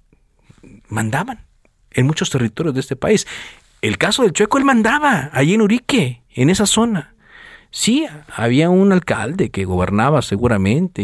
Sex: male